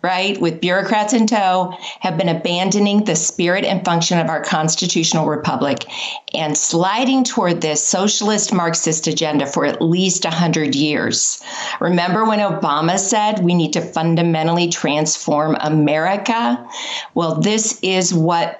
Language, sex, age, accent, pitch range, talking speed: English, female, 50-69, American, 170-220 Hz, 135 wpm